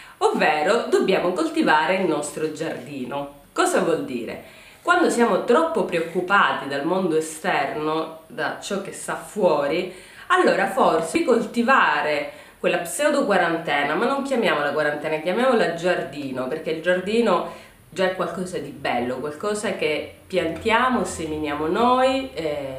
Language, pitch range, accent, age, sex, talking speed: Italian, 165-240 Hz, native, 30-49, female, 125 wpm